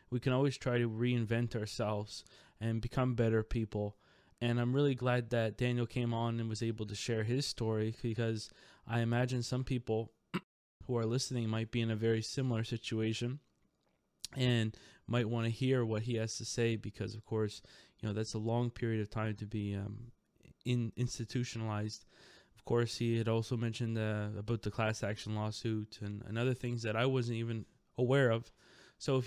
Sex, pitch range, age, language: male, 110-125 Hz, 20-39, English